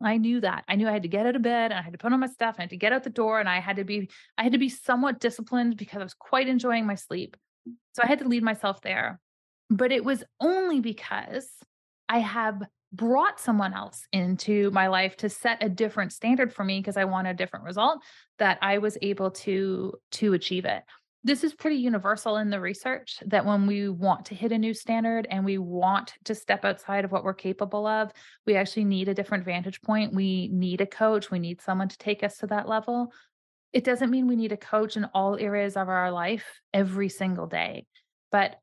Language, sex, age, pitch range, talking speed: English, female, 30-49, 195-235 Hz, 235 wpm